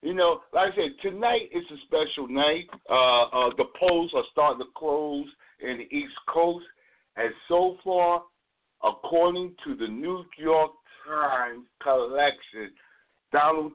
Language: English